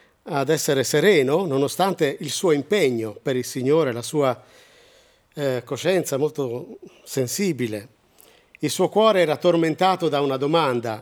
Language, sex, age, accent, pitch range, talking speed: Italian, male, 50-69, native, 130-175 Hz, 130 wpm